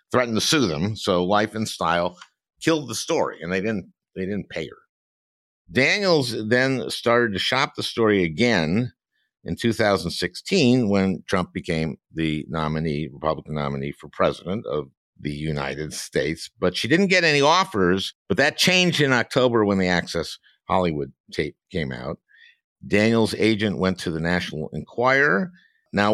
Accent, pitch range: American, 85-115 Hz